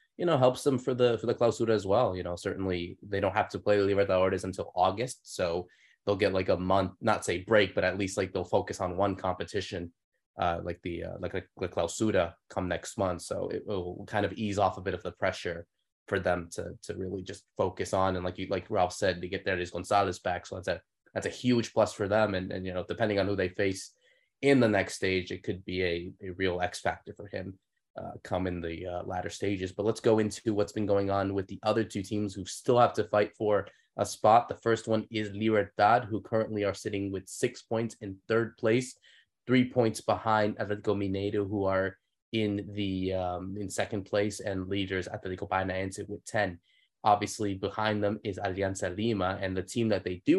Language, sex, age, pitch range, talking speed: English, male, 20-39, 95-110 Hz, 225 wpm